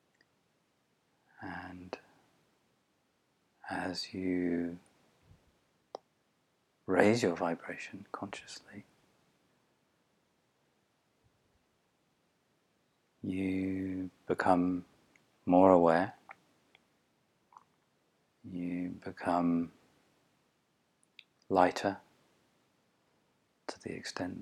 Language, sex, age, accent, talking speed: English, male, 40-59, British, 40 wpm